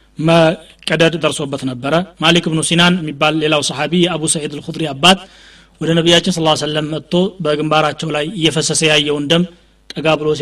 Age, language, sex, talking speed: 30-49, Amharic, male, 145 wpm